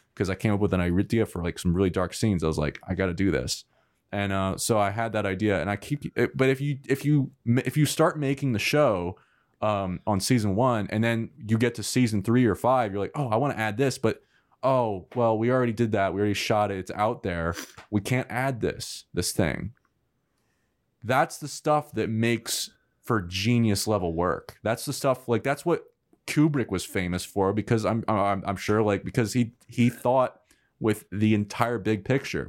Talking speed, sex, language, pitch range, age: 210 wpm, male, English, 100-130 Hz, 20-39